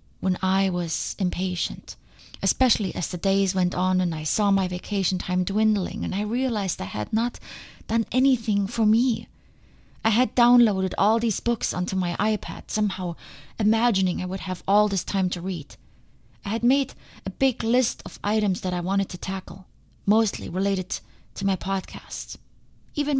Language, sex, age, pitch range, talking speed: English, female, 20-39, 180-215 Hz, 170 wpm